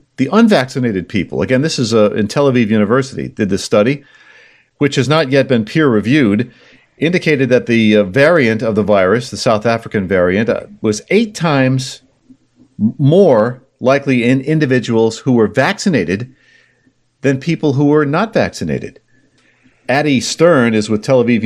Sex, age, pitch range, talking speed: male, 50-69, 115-155 Hz, 155 wpm